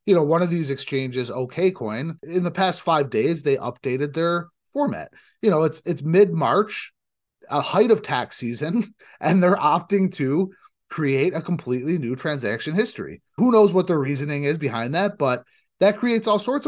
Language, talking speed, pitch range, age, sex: English, 180 wpm, 130-175 Hz, 30-49, male